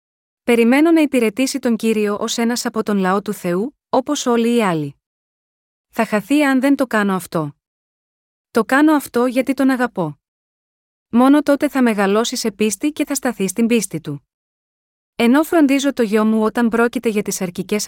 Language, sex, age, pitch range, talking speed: Greek, female, 20-39, 205-255 Hz, 170 wpm